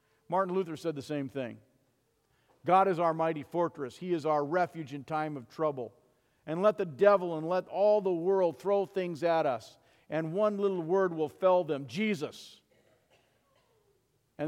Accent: American